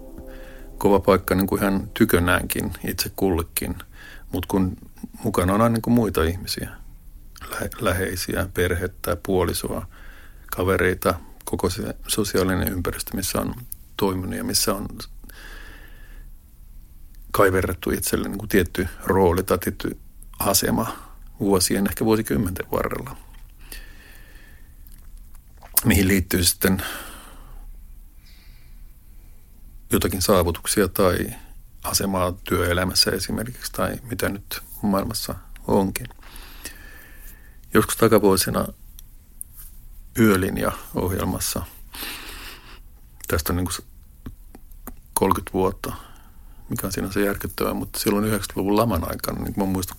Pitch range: 70-100 Hz